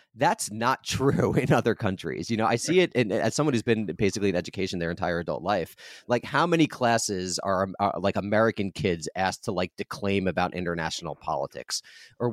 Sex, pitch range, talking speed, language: male, 90-115 Hz, 190 wpm, English